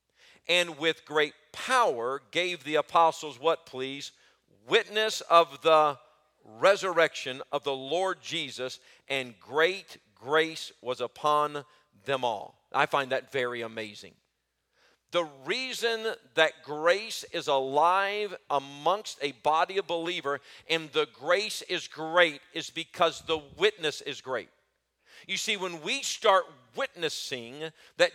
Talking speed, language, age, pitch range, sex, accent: 125 wpm, English, 50-69, 140-190 Hz, male, American